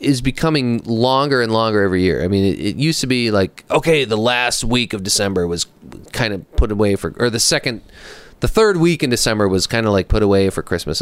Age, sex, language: 30-49, male, English